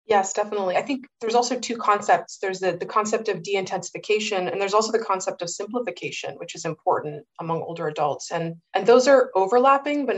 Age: 20-39